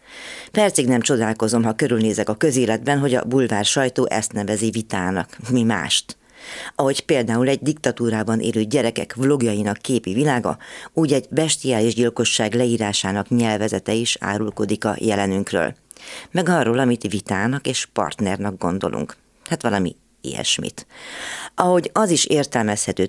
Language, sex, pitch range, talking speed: Hungarian, female, 105-130 Hz, 125 wpm